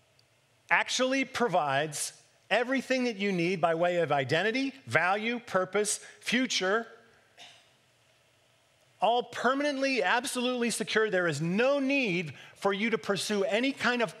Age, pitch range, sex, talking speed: 40-59, 130-210 Hz, male, 120 wpm